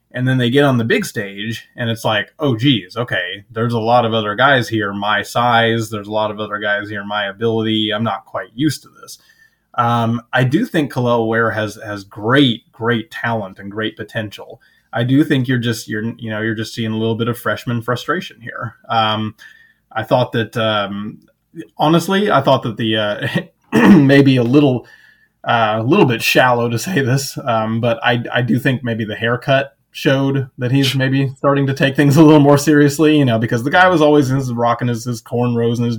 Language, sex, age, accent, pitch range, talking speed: English, male, 20-39, American, 115-140 Hz, 210 wpm